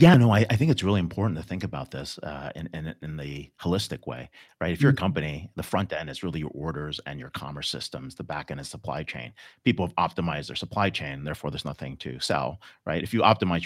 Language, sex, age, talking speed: English, male, 40-59, 245 wpm